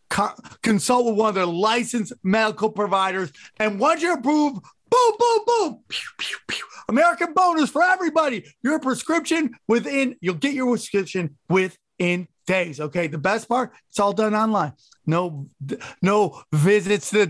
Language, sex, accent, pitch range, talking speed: English, male, American, 170-235 Hz, 140 wpm